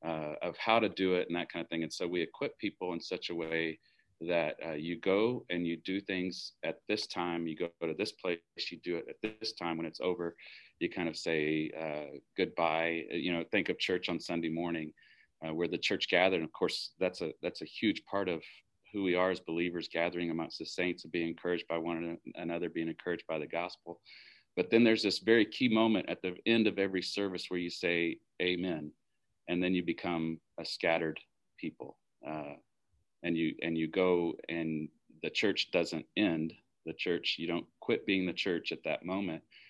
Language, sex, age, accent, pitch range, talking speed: English, male, 40-59, American, 80-95 Hz, 210 wpm